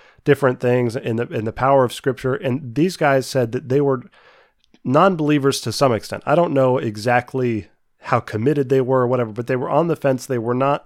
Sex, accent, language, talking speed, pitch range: male, American, English, 215 wpm, 120-135 Hz